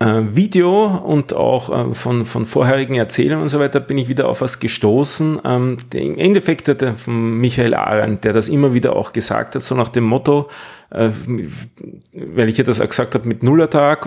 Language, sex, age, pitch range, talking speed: German, male, 40-59, 115-150 Hz, 185 wpm